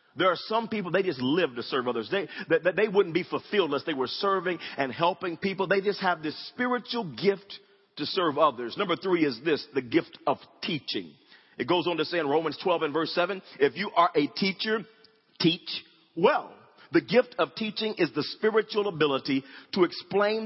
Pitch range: 145-200 Hz